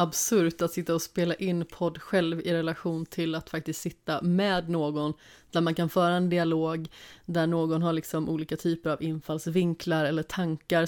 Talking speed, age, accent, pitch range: 175 wpm, 30-49, native, 160-185 Hz